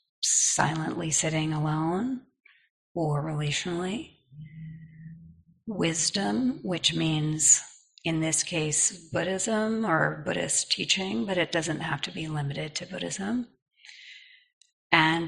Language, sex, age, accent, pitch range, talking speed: English, female, 40-59, American, 155-200 Hz, 100 wpm